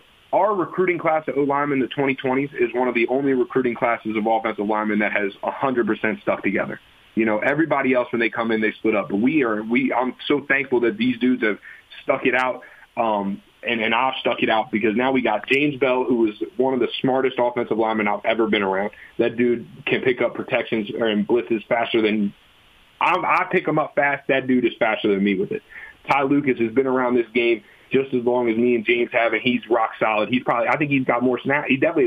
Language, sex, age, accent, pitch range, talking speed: English, male, 30-49, American, 115-135 Hz, 235 wpm